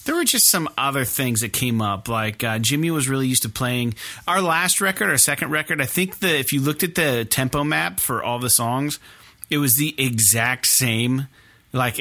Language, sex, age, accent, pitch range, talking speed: English, male, 30-49, American, 115-145 Hz, 215 wpm